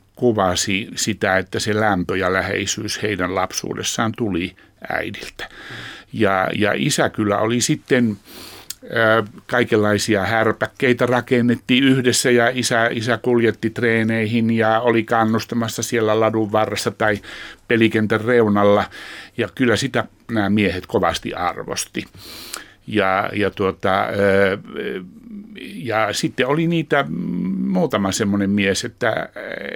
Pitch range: 100-120 Hz